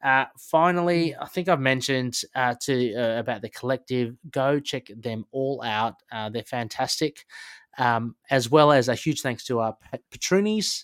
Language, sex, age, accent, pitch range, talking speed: English, male, 20-39, Australian, 120-145 Hz, 165 wpm